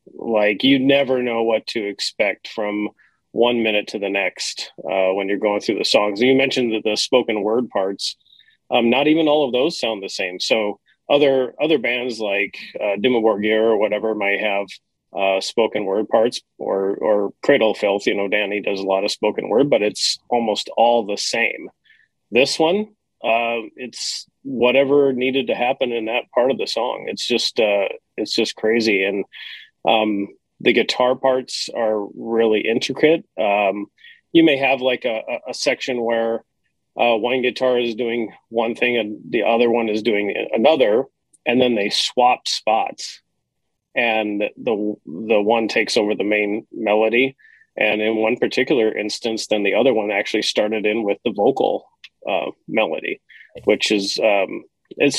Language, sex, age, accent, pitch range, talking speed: English, male, 30-49, American, 105-130 Hz, 170 wpm